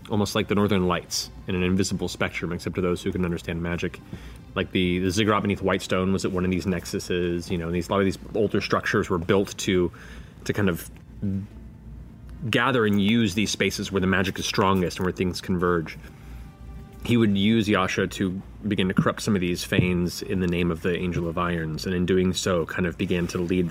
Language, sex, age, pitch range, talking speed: English, male, 30-49, 85-105 Hz, 220 wpm